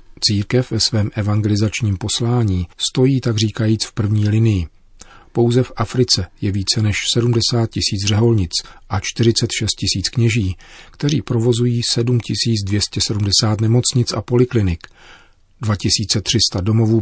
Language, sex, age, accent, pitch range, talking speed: Czech, male, 40-59, native, 100-120 Hz, 115 wpm